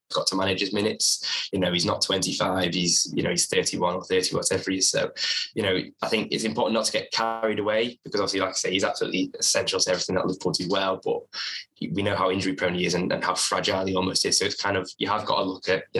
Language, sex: English, male